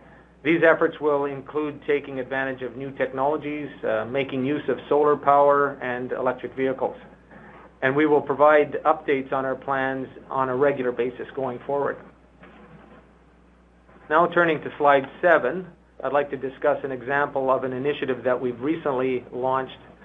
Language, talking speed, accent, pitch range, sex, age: English, 150 wpm, American, 130-145 Hz, male, 40-59